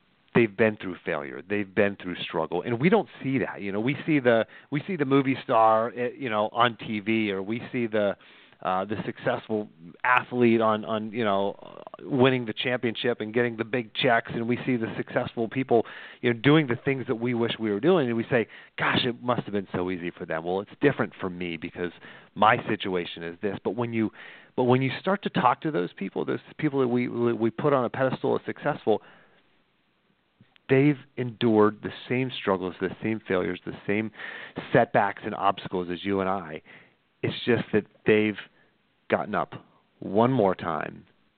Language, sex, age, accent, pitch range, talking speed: English, male, 40-59, American, 100-130 Hz, 195 wpm